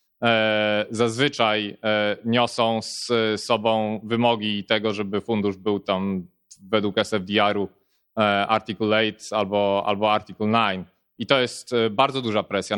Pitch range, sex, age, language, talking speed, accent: 110-130 Hz, male, 20-39, Polish, 115 wpm, native